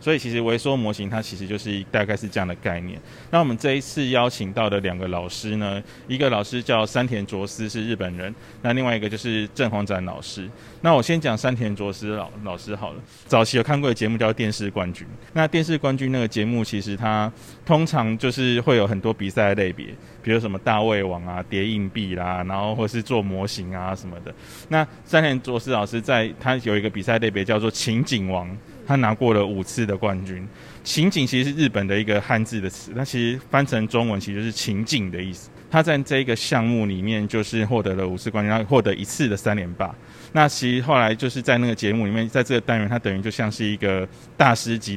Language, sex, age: Chinese, male, 20-39